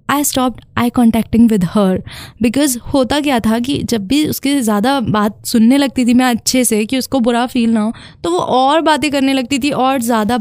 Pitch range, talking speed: 225-275 Hz, 210 wpm